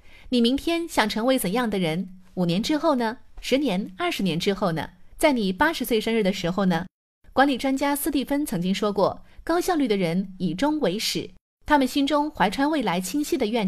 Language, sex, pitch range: Chinese, female, 185-260 Hz